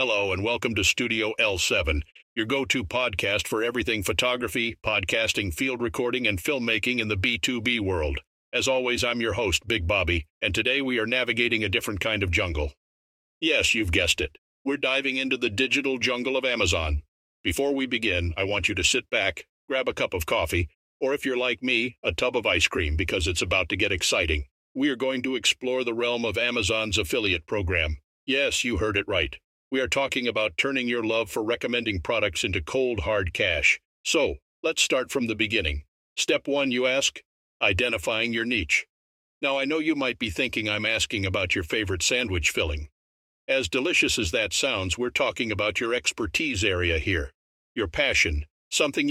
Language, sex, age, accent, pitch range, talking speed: English, male, 60-79, American, 90-130 Hz, 185 wpm